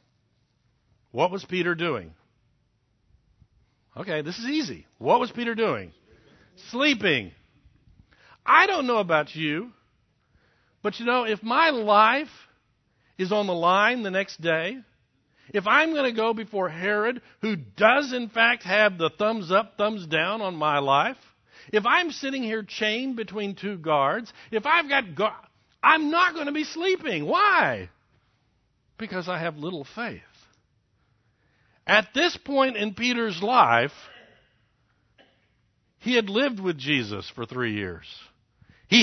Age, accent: 60-79, American